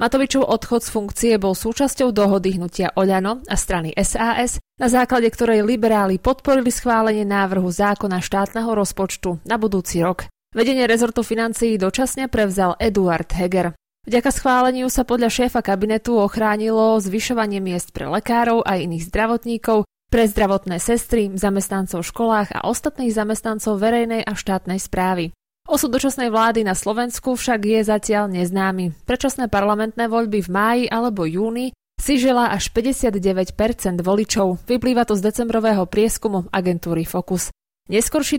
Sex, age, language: female, 20-39, Slovak